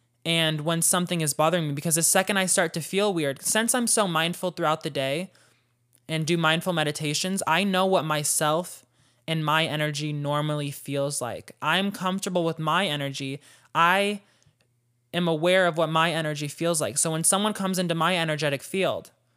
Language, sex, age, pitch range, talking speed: English, male, 20-39, 140-180 Hz, 175 wpm